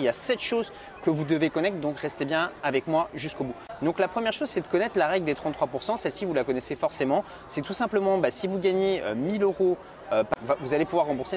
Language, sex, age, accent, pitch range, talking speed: French, male, 30-49, French, 145-200 Hz, 255 wpm